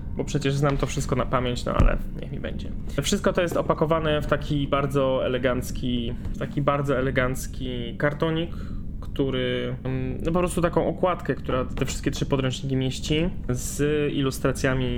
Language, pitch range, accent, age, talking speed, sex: Polish, 125-150 Hz, native, 20-39, 155 wpm, male